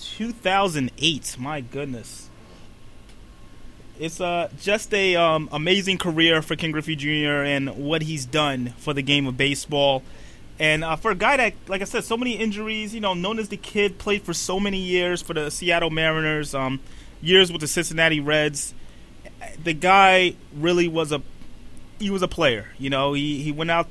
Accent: American